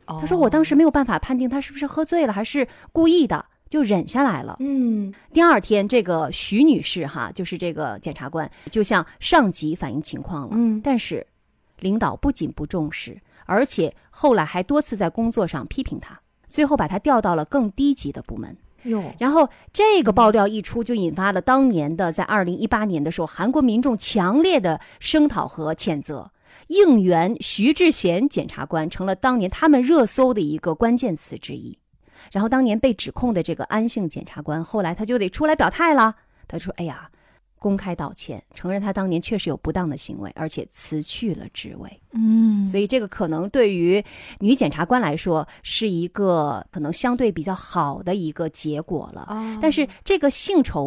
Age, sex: 30-49, female